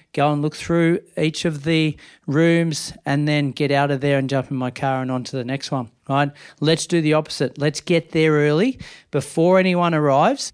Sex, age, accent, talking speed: male, 40-59, Australian, 210 wpm